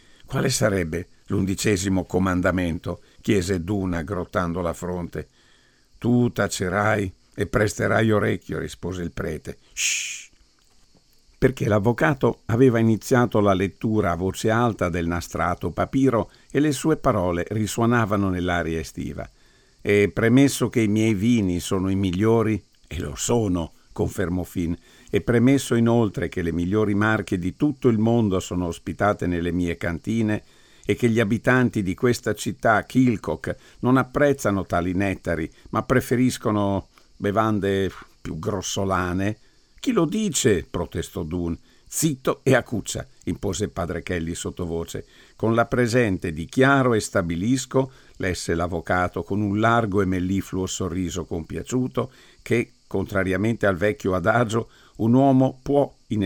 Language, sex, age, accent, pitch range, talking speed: Italian, male, 50-69, native, 90-120 Hz, 130 wpm